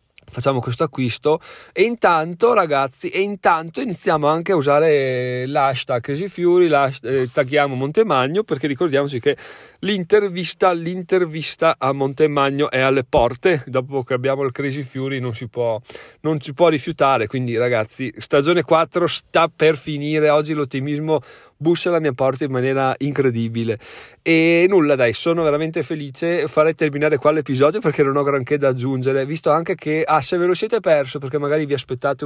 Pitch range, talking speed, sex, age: 125-160 Hz, 160 wpm, male, 30-49